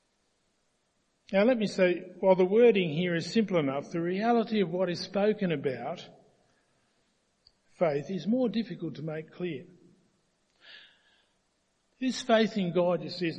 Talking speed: 145 wpm